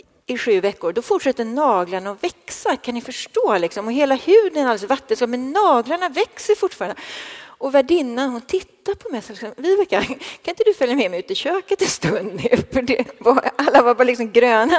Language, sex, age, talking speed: Swedish, female, 40-59, 210 wpm